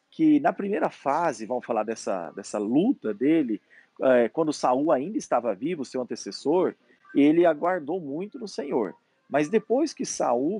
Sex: male